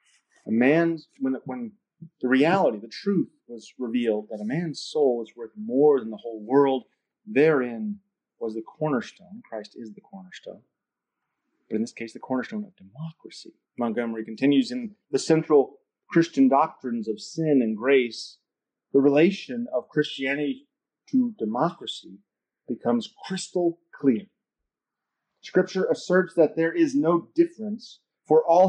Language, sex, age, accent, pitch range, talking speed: English, male, 30-49, American, 140-215 Hz, 140 wpm